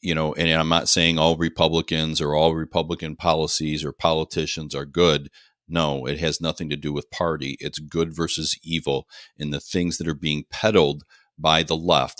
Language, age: English, 40-59